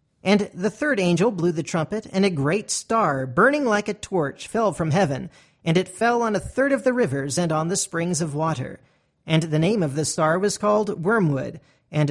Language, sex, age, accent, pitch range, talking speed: English, male, 40-59, American, 155-215 Hz, 215 wpm